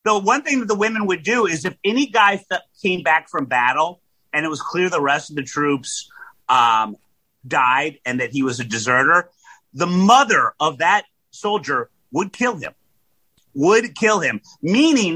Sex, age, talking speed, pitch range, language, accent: male, 30-49, 180 wpm, 140-200 Hz, English, American